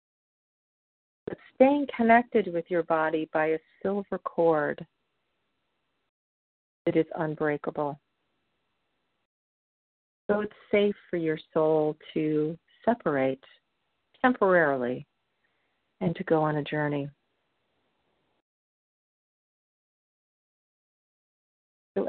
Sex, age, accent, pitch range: female, 40-59, American, 155-200 Hz